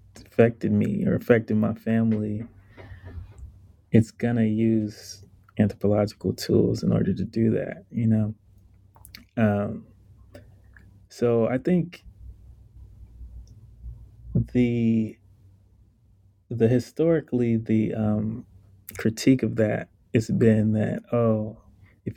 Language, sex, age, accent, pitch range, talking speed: English, male, 20-39, American, 100-110 Hz, 95 wpm